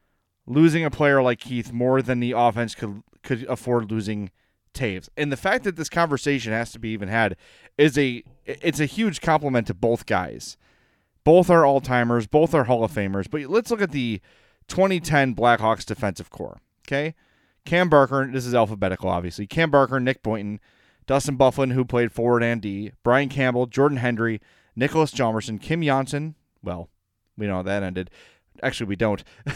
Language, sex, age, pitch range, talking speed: English, male, 30-49, 105-150 Hz, 175 wpm